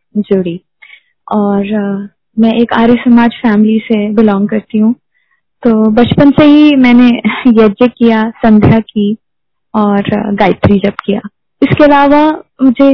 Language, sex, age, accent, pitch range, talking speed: Hindi, female, 20-39, native, 215-255 Hz, 130 wpm